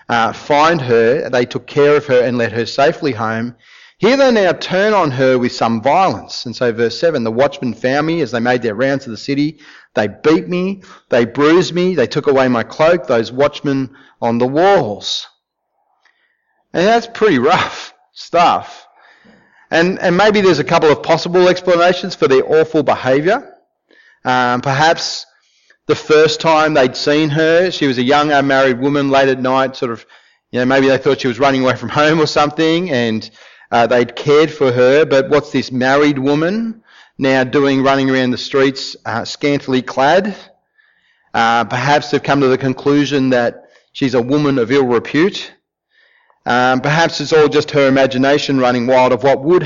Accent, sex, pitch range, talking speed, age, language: Australian, male, 125-160 Hz, 180 wpm, 30-49, English